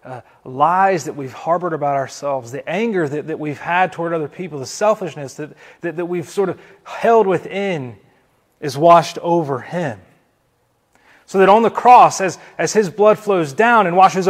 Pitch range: 150-200 Hz